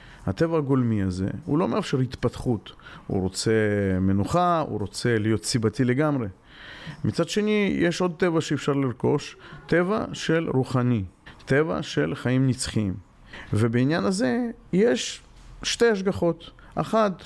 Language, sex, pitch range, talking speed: Hebrew, male, 115-160 Hz, 120 wpm